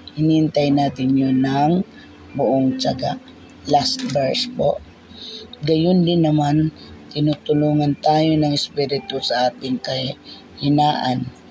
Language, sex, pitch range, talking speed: Filipino, female, 130-155 Hz, 100 wpm